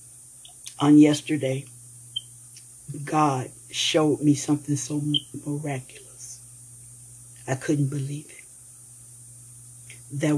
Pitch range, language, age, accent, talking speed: 120-155 Hz, English, 60-79, American, 75 wpm